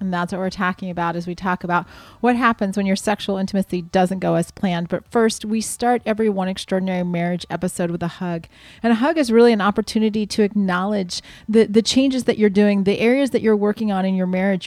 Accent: American